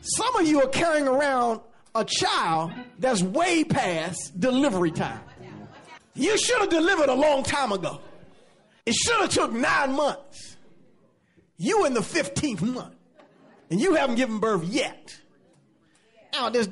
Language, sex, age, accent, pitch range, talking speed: English, male, 40-59, American, 185-290 Hz, 145 wpm